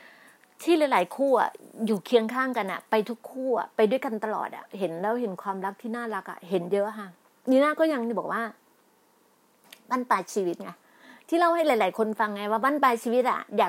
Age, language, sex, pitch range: 30-49, Thai, female, 210-265 Hz